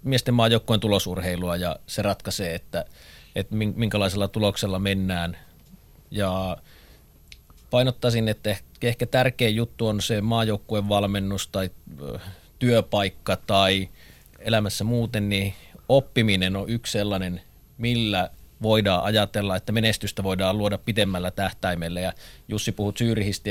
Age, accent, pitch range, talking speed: 30-49, native, 95-105 Hz, 110 wpm